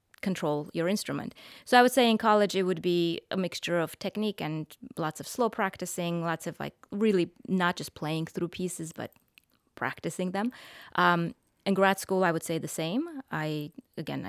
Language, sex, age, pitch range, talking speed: English, female, 20-39, 165-205 Hz, 185 wpm